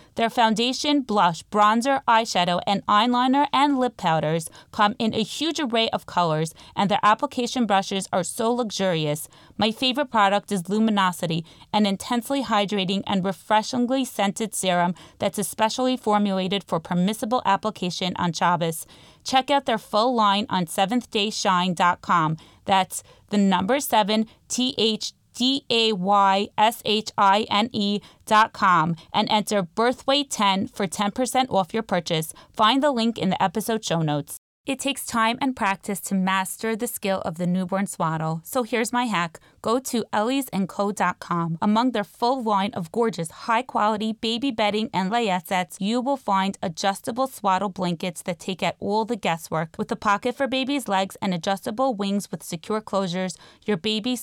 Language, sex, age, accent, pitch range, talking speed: English, female, 20-39, American, 185-230 Hz, 155 wpm